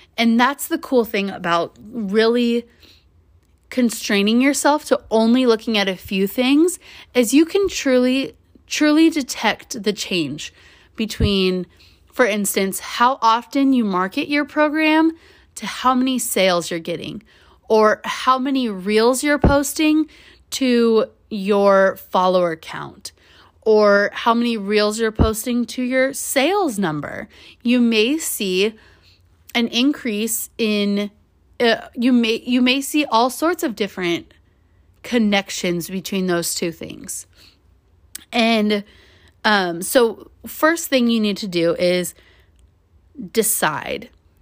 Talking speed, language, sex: 125 wpm, English, female